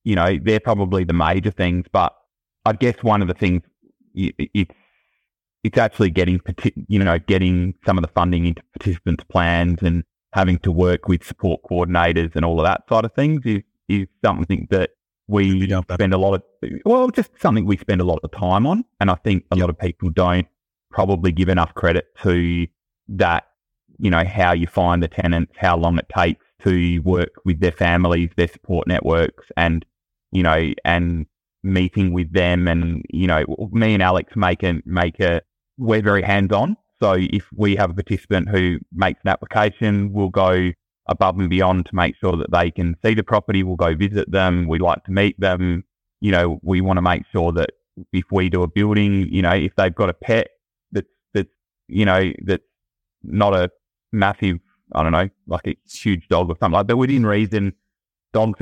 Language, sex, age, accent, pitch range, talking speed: English, male, 20-39, Australian, 85-100 Hz, 195 wpm